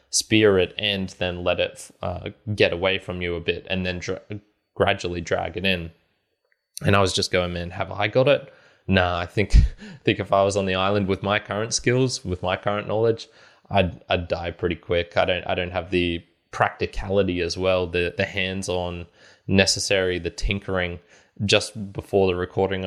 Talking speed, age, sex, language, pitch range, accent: 190 wpm, 20-39, male, English, 90-100 Hz, Australian